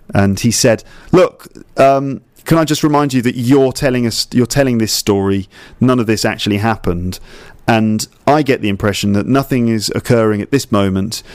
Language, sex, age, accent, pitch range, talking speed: English, male, 40-59, British, 105-130 Hz, 185 wpm